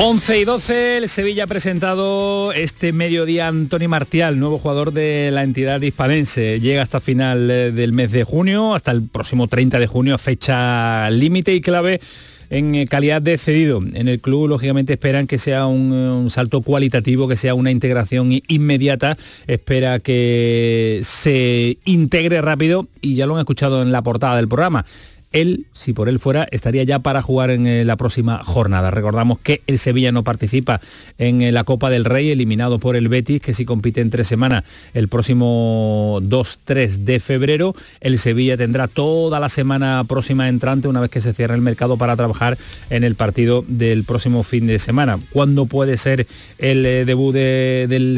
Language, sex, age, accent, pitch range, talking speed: Spanish, male, 40-59, Spanish, 120-145 Hz, 175 wpm